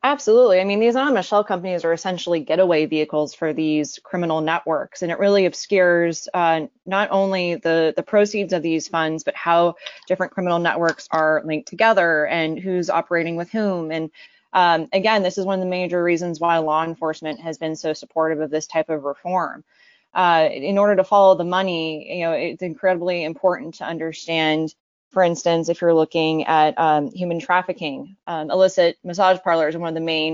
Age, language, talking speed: 20-39, English, 190 wpm